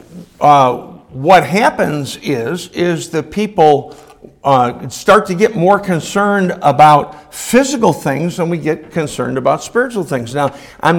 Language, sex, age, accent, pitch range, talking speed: English, male, 60-79, American, 150-190 Hz, 135 wpm